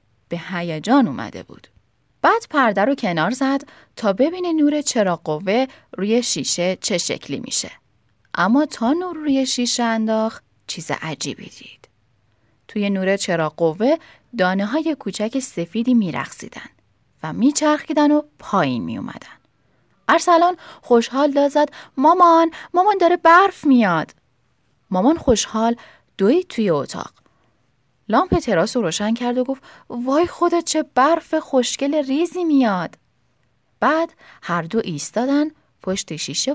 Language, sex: Persian, female